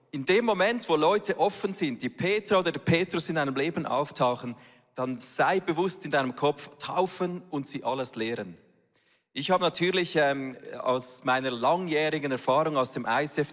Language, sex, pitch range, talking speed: German, male, 135-165 Hz, 170 wpm